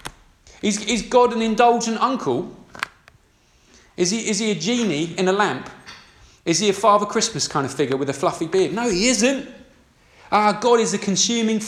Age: 30-49